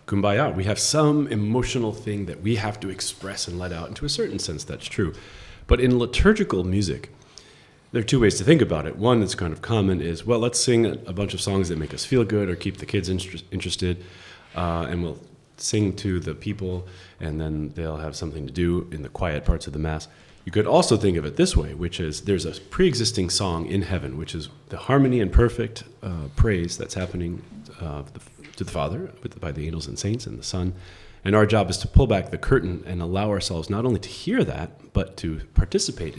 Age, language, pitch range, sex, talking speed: 30-49, English, 80-105 Hz, male, 225 wpm